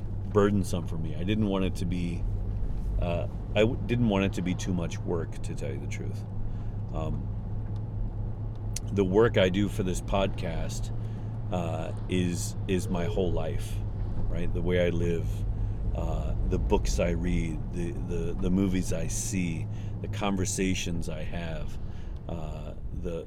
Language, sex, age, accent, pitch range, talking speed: English, male, 40-59, American, 85-105 Hz, 155 wpm